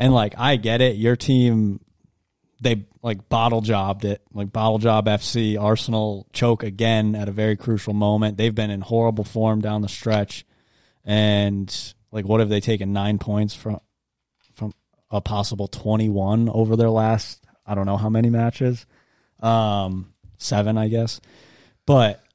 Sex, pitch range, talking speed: male, 110-150 Hz, 155 wpm